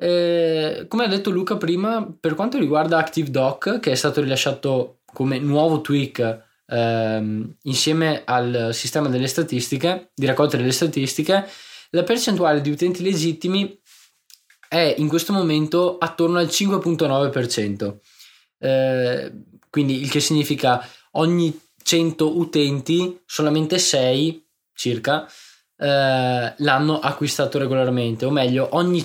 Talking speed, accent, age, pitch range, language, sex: 115 wpm, native, 20-39, 135-170 Hz, Italian, male